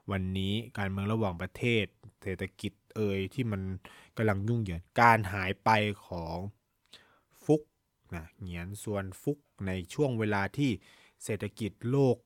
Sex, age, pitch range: male, 20-39, 95-120 Hz